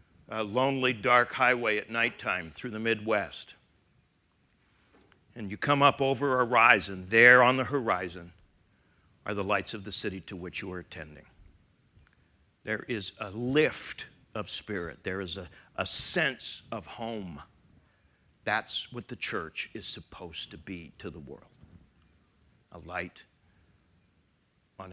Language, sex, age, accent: English, male, 60-79, American